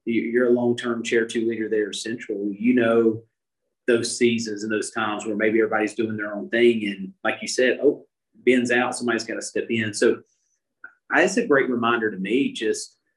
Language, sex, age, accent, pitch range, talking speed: English, male, 30-49, American, 110-130 Hz, 200 wpm